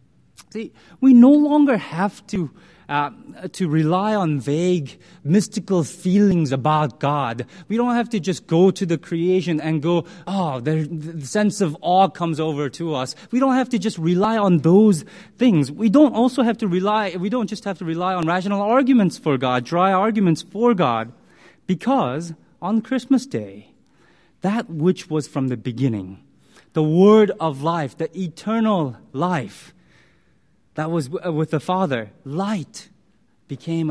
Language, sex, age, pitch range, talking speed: English, male, 30-49, 140-200 Hz, 160 wpm